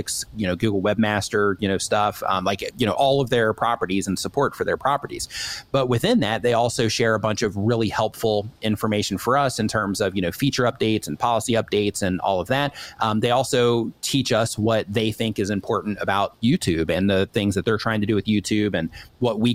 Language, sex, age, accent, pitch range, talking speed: English, male, 30-49, American, 100-120 Hz, 225 wpm